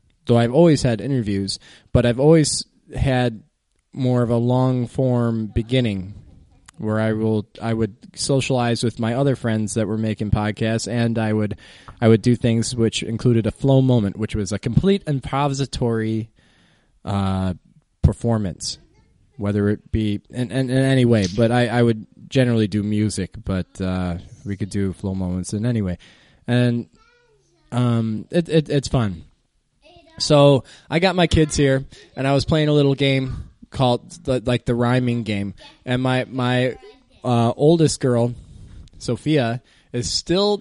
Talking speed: 155 wpm